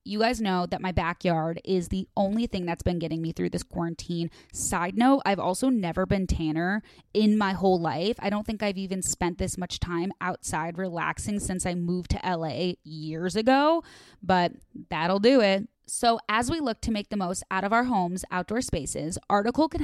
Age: 20-39